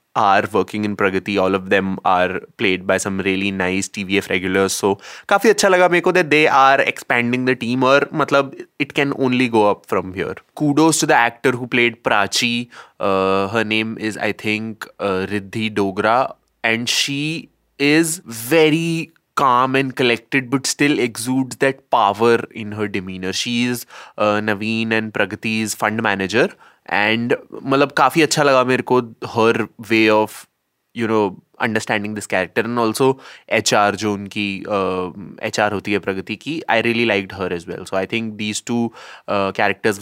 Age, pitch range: 20-39, 105-135 Hz